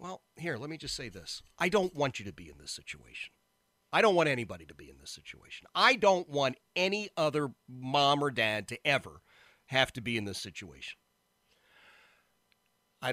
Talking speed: 190 wpm